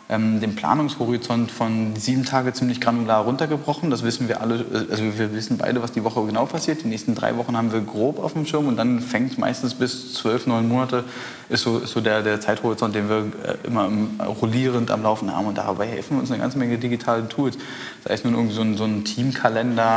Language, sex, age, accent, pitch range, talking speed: German, male, 20-39, German, 110-125 Hz, 210 wpm